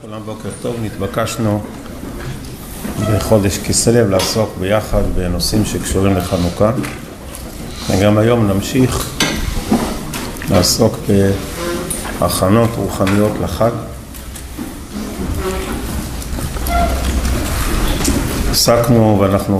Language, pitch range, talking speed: Hebrew, 85-115 Hz, 60 wpm